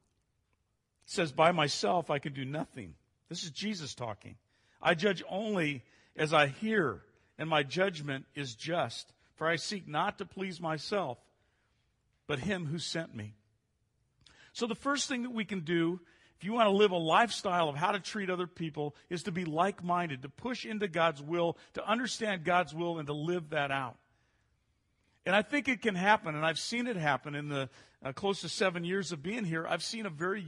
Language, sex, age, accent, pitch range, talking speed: English, male, 50-69, American, 135-195 Hz, 195 wpm